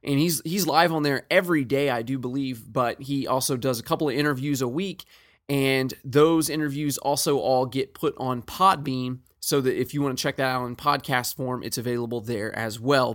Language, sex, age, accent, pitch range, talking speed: English, male, 20-39, American, 125-150 Hz, 215 wpm